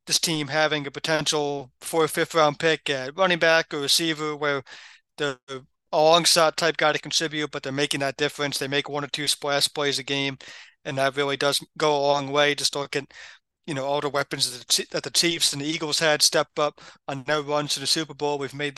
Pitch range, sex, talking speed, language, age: 145-165 Hz, male, 220 wpm, English, 30-49